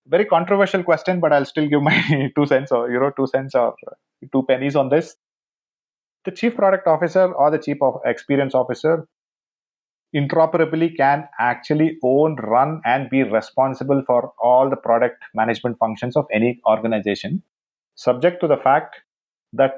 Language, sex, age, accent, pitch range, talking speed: English, male, 30-49, Indian, 125-150 Hz, 160 wpm